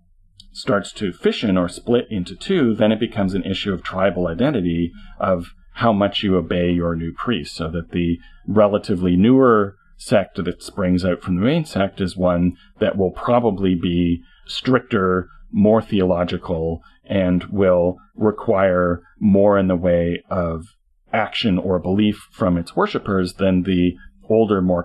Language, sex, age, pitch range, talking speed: English, male, 40-59, 90-100 Hz, 150 wpm